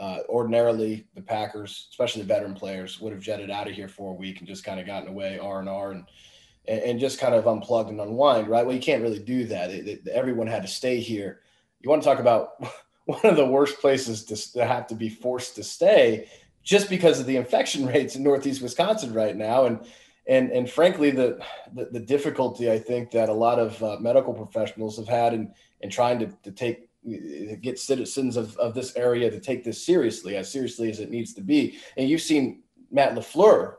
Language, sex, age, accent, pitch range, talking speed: English, male, 20-39, American, 110-130 Hz, 220 wpm